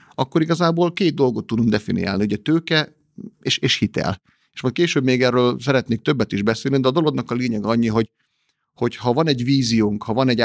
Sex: male